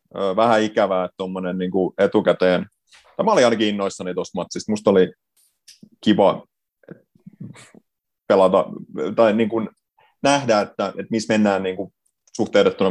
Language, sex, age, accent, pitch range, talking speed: Finnish, male, 30-49, native, 90-105 Hz, 120 wpm